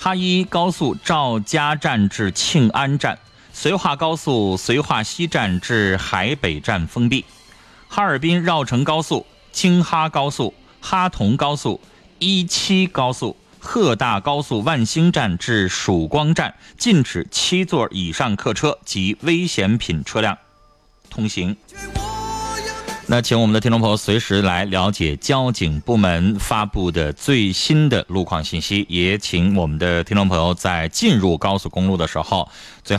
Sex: male